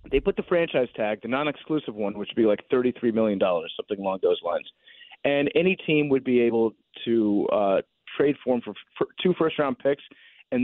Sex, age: male, 30-49